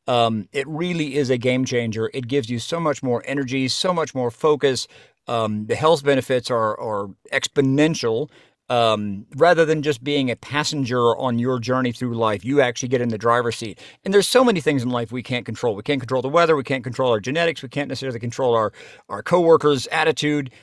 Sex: male